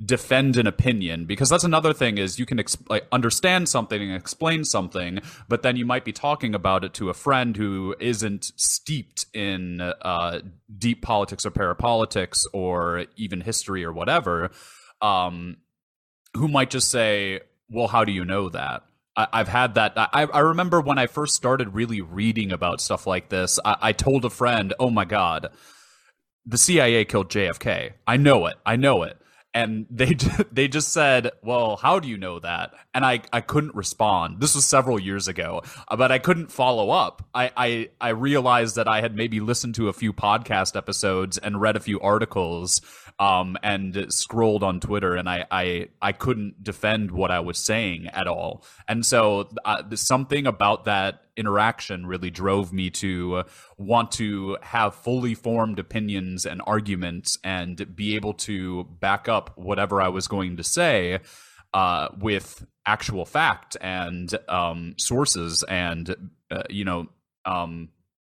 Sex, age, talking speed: male, 30-49, 165 wpm